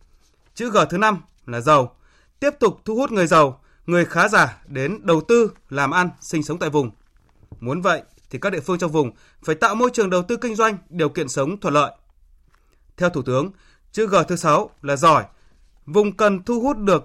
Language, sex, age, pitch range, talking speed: Vietnamese, male, 20-39, 135-205 Hz, 210 wpm